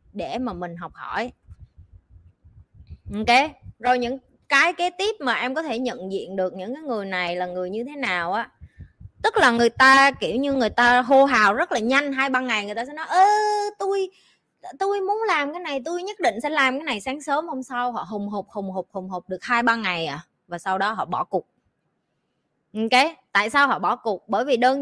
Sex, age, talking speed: female, 20-39, 225 wpm